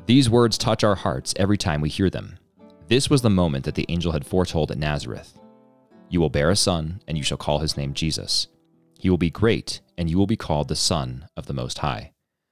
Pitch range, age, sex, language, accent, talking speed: 80-100 Hz, 30-49, male, English, American, 230 wpm